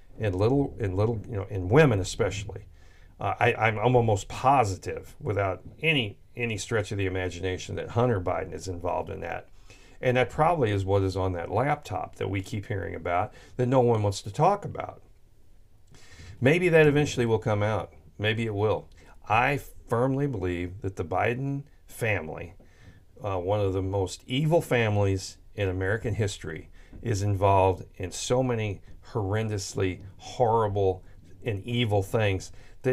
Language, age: English, 40-59